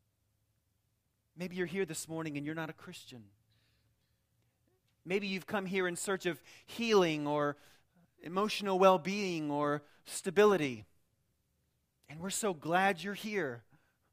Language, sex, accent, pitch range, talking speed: English, male, American, 120-190 Hz, 125 wpm